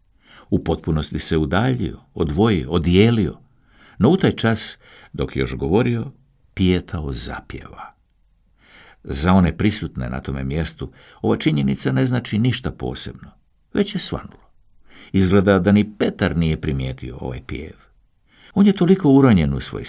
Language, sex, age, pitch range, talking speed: Croatian, male, 60-79, 70-100 Hz, 135 wpm